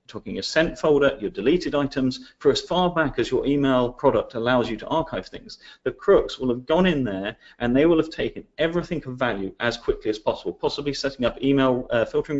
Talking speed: 220 wpm